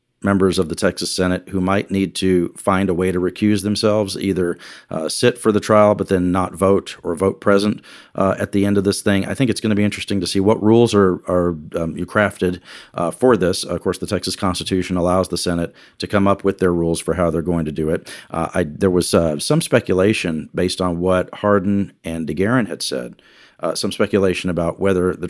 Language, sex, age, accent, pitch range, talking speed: English, male, 40-59, American, 90-110 Hz, 230 wpm